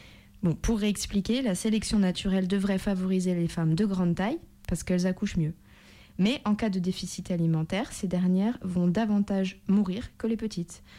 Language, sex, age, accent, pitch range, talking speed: French, female, 20-39, French, 170-195 Hz, 165 wpm